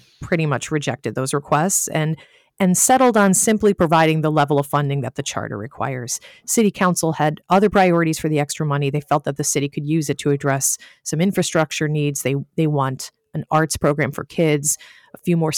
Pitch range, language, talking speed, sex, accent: 145-170 Hz, English, 200 wpm, female, American